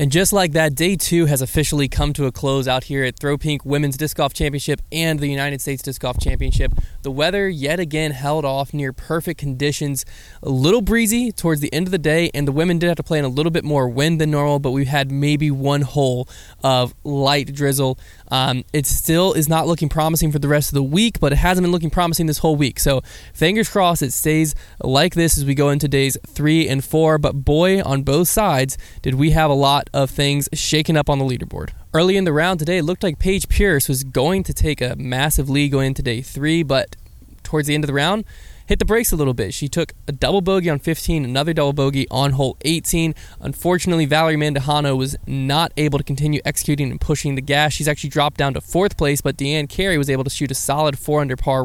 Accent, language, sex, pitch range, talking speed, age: American, English, male, 140-165 Hz, 235 wpm, 20-39